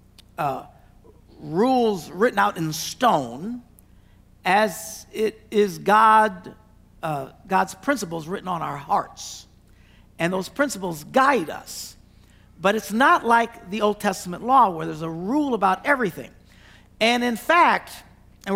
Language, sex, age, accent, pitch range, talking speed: English, male, 50-69, American, 155-230 Hz, 130 wpm